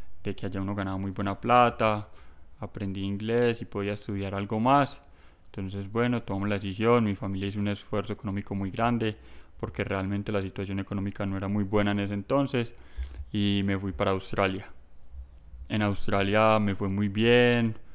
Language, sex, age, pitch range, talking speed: Spanish, male, 20-39, 100-115 Hz, 165 wpm